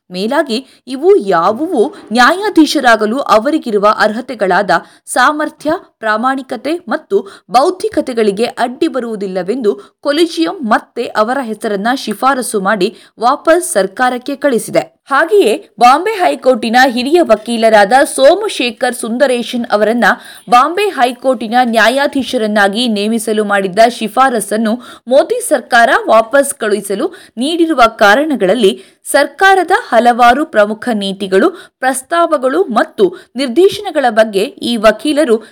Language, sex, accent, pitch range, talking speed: Kannada, female, native, 220-305 Hz, 85 wpm